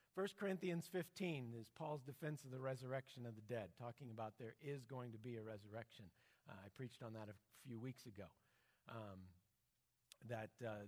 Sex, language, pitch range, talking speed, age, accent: male, English, 110-135 Hz, 180 wpm, 50-69, American